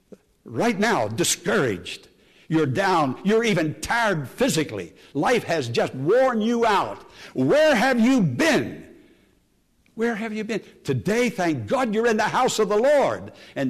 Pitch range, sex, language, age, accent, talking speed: 145-240 Hz, male, English, 60-79, American, 150 wpm